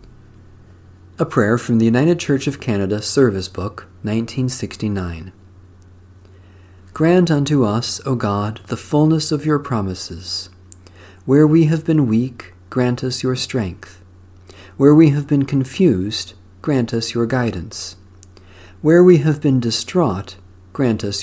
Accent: American